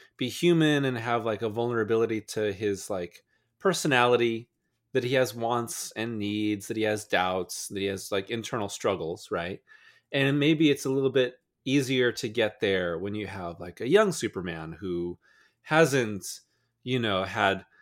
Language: English